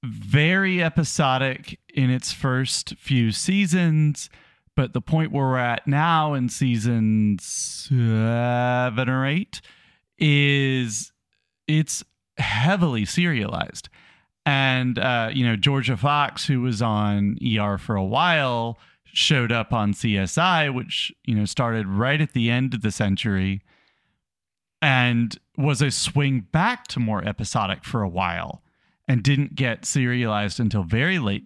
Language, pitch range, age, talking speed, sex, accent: English, 110-145 Hz, 40-59, 130 wpm, male, American